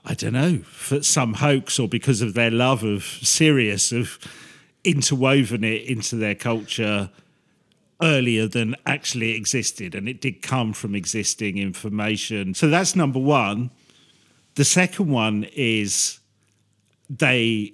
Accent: British